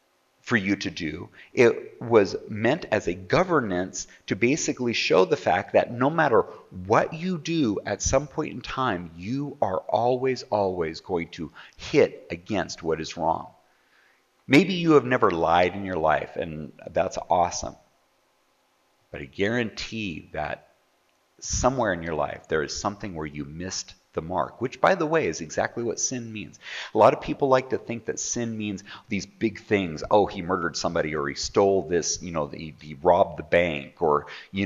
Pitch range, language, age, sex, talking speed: 85-125 Hz, English, 40-59, male, 180 wpm